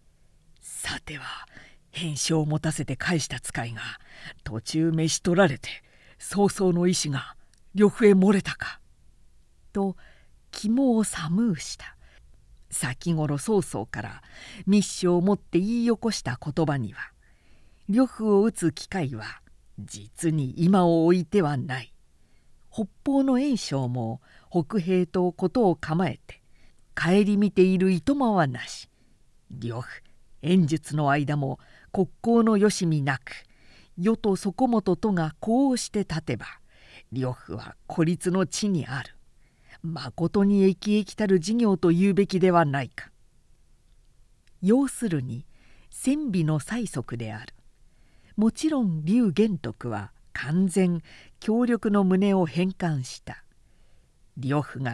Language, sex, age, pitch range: Japanese, female, 50-69, 135-200 Hz